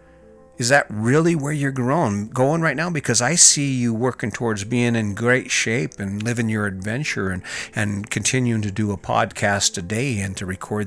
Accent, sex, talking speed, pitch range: American, male, 190 wpm, 100-125 Hz